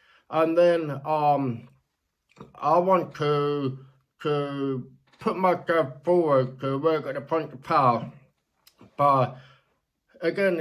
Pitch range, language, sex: 135-160 Hz, English, male